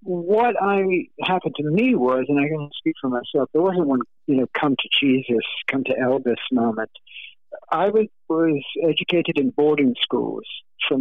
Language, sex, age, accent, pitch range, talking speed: English, male, 60-79, American, 130-160 Hz, 175 wpm